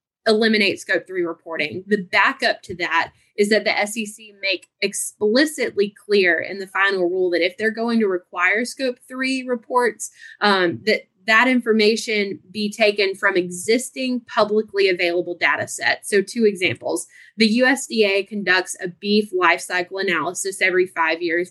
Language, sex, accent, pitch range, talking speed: English, female, American, 185-235 Hz, 150 wpm